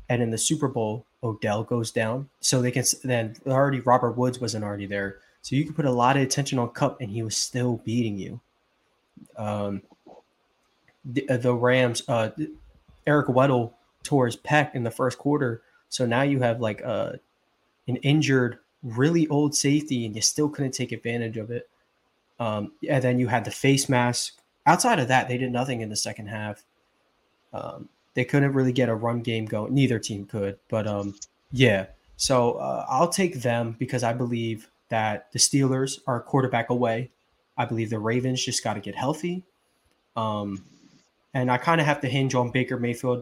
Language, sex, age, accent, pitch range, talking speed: English, male, 20-39, American, 110-130 Hz, 185 wpm